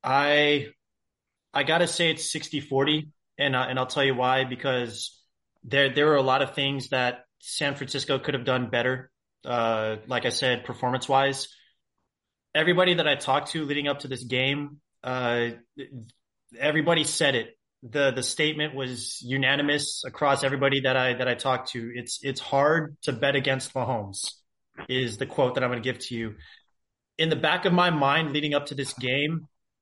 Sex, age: male, 20-39